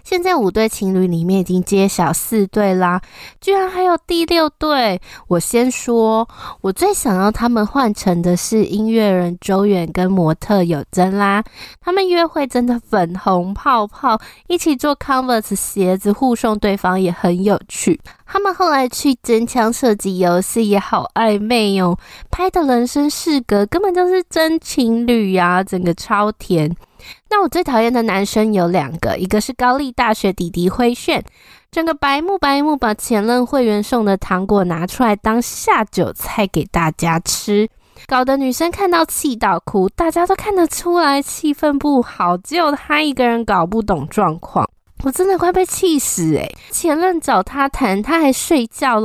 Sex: female